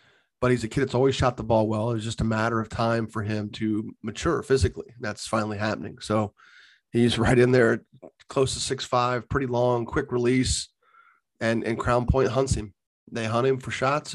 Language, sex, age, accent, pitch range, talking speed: English, male, 30-49, American, 110-130 Hz, 205 wpm